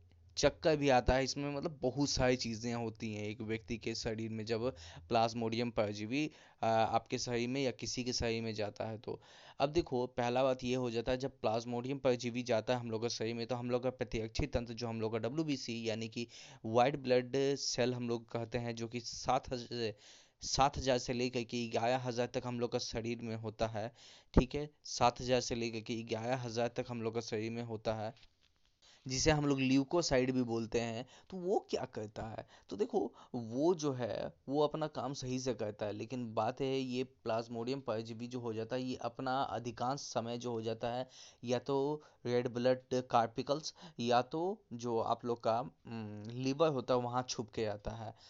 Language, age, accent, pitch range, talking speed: Hindi, 20-39, native, 115-130 Hz, 200 wpm